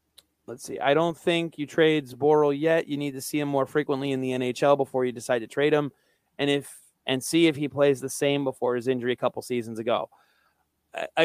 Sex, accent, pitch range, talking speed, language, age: male, American, 130-165 Hz, 225 wpm, English, 30-49